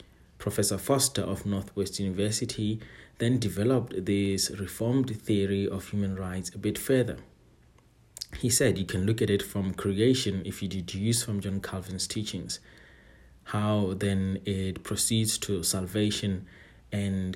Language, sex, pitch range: English, male, 95-110 Hz